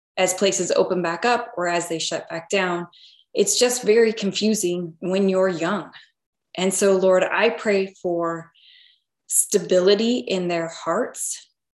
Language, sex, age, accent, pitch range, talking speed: English, female, 20-39, American, 175-200 Hz, 145 wpm